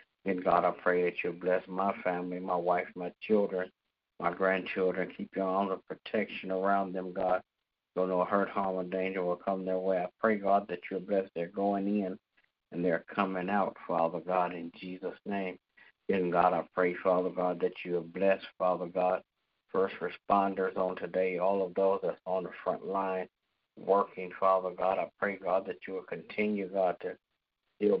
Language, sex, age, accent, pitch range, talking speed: English, male, 60-79, American, 90-100 Hz, 185 wpm